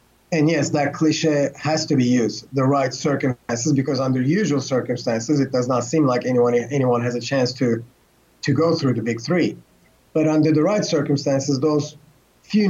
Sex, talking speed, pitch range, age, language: male, 185 wpm, 135-155 Hz, 30-49, English